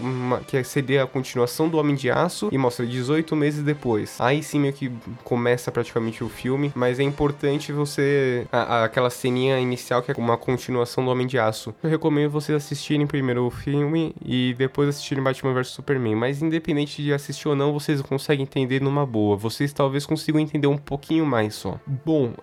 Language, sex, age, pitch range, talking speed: Portuguese, male, 10-29, 120-150 Hz, 195 wpm